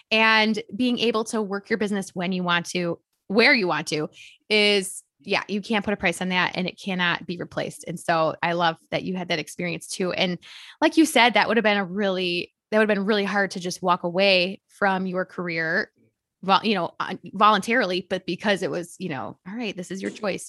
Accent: American